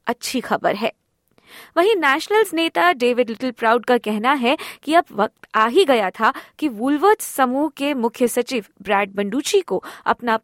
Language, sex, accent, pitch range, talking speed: Hindi, female, native, 225-310 Hz, 165 wpm